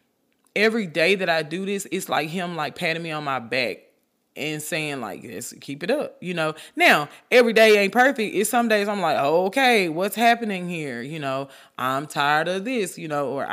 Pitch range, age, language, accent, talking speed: 165-225 Hz, 20-39, English, American, 205 wpm